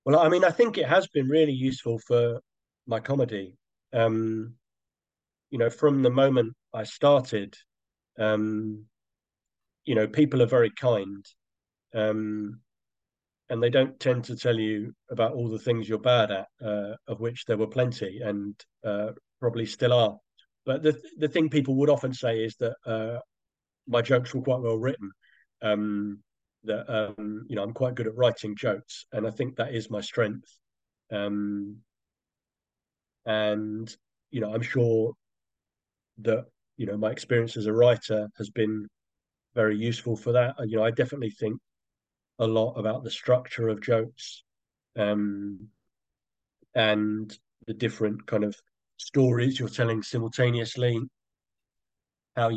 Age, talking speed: 40-59, 150 wpm